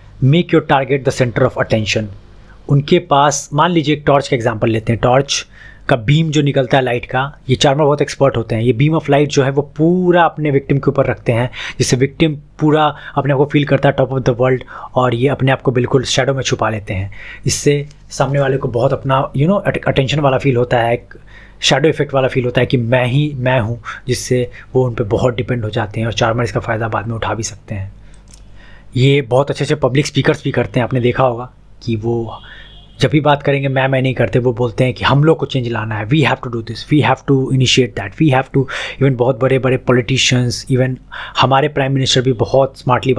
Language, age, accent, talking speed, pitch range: Hindi, 20-39, native, 235 wpm, 120-140 Hz